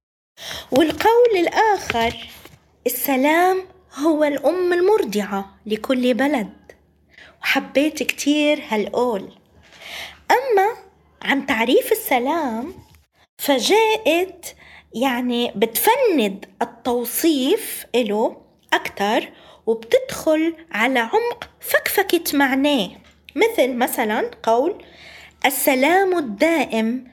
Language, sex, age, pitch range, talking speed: Arabic, female, 20-39, 220-325 Hz, 70 wpm